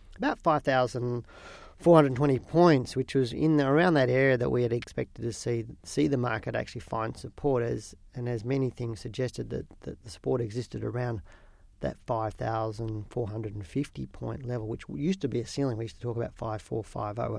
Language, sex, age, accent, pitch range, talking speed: English, male, 40-59, Australian, 110-130 Hz, 175 wpm